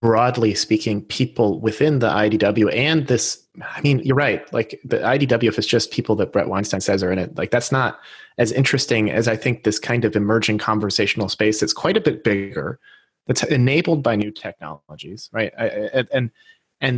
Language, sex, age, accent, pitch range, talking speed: English, male, 30-49, American, 105-135 Hz, 185 wpm